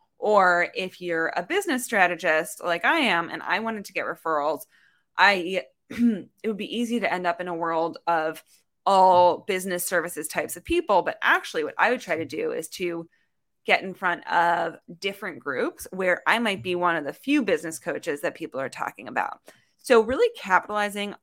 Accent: American